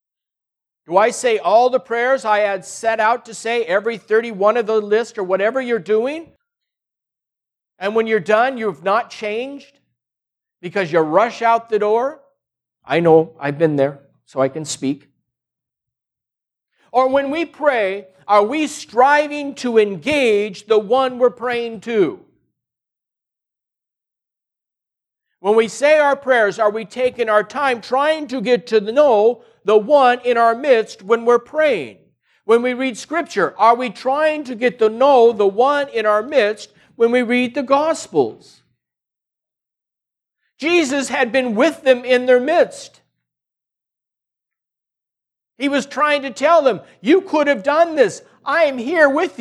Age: 50-69